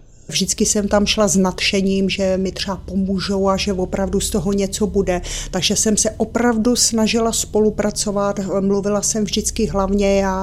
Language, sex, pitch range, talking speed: Czech, female, 195-220 Hz, 160 wpm